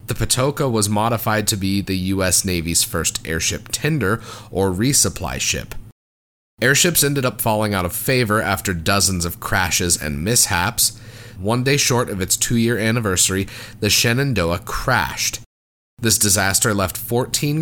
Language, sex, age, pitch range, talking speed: English, male, 30-49, 90-115 Hz, 145 wpm